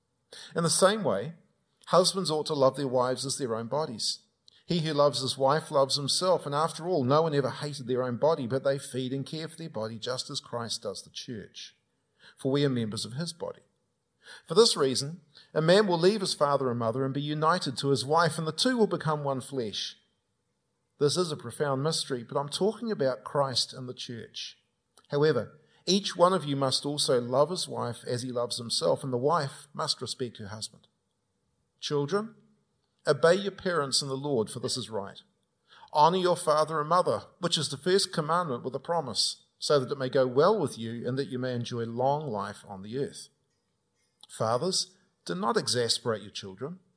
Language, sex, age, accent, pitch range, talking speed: English, male, 40-59, Australian, 130-170 Hz, 200 wpm